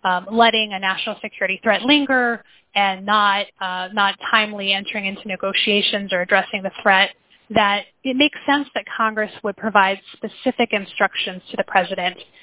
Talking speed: 155 wpm